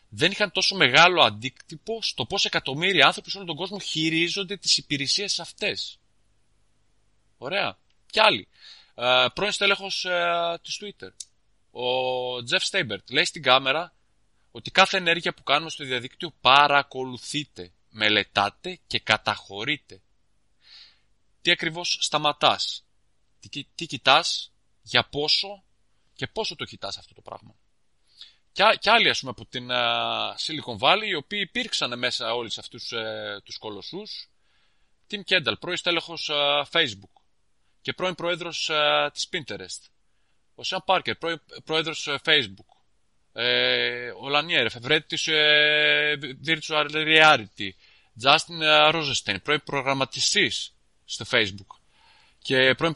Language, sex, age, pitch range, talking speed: Greek, male, 30-49, 115-170 Hz, 125 wpm